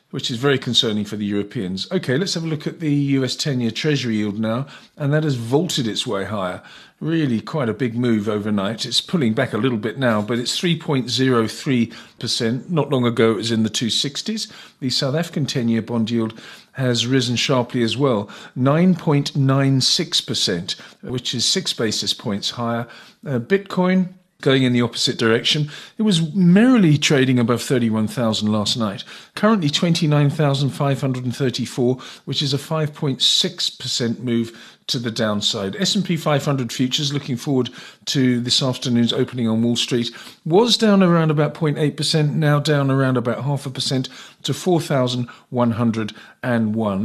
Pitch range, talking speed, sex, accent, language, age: 115-150 Hz, 150 wpm, male, British, English, 50-69